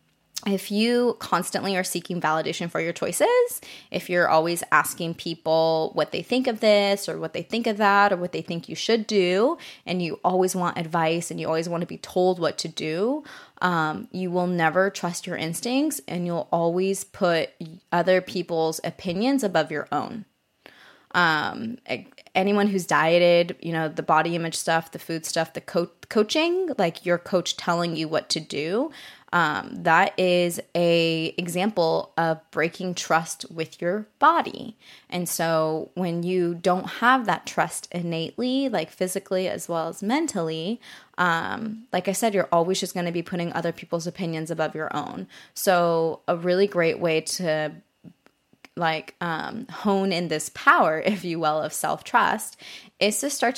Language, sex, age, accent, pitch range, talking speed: English, female, 20-39, American, 165-200 Hz, 170 wpm